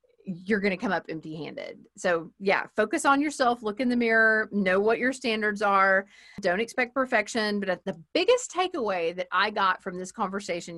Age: 40-59